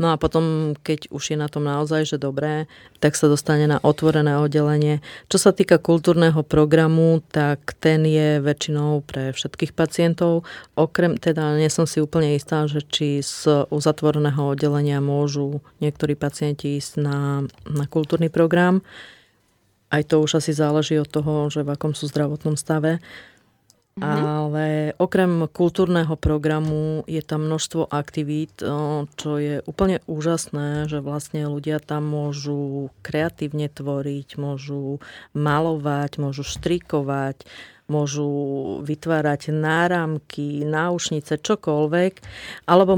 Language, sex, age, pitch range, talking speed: Slovak, female, 30-49, 145-160 Hz, 125 wpm